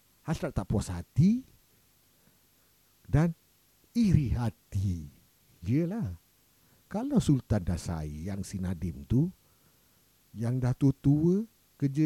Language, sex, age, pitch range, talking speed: Malay, male, 50-69, 95-155 Hz, 90 wpm